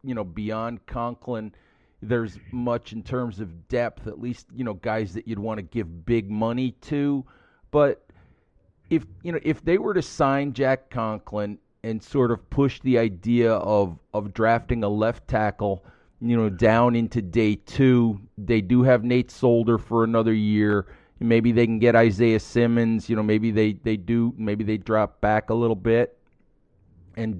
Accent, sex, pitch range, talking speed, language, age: American, male, 105-120 Hz, 175 wpm, English, 40-59